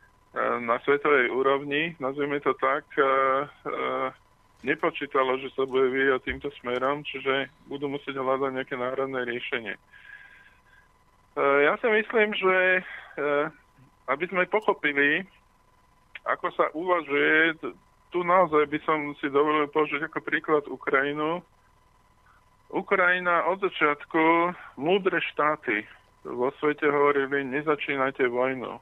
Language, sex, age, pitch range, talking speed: Slovak, male, 20-39, 130-155 Hz, 105 wpm